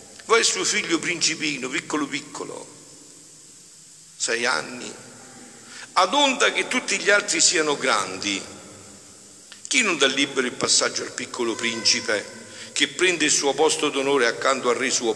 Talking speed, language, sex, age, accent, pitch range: 140 wpm, Italian, male, 50-69, native, 120-155 Hz